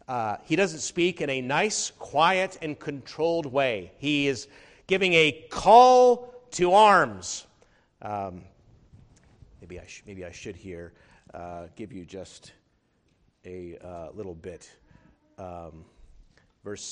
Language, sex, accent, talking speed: English, male, American, 120 wpm